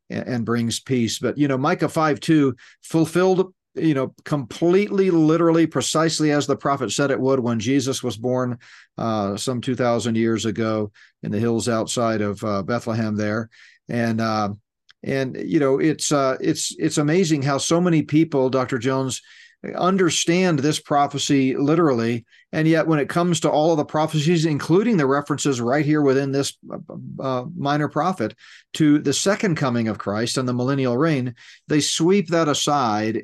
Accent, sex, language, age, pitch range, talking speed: American, male, English, 40-59, 125-155 Hz, 170 wpm